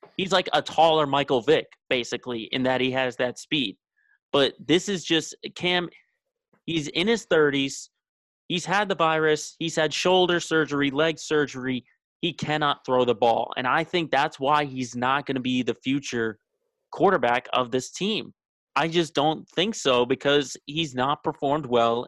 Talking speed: 170 wpm